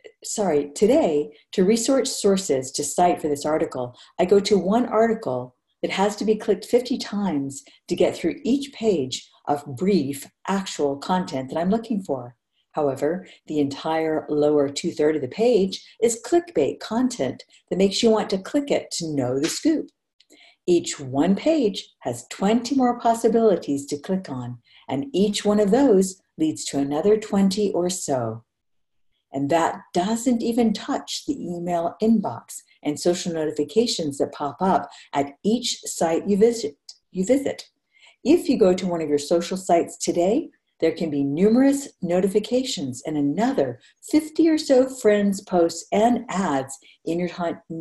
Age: 50-69